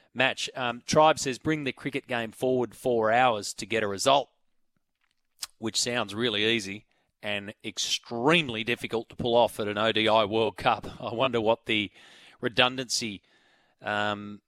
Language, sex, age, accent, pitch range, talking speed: English, male, 30-49, Australian, 120-140 Hz, 150 wpm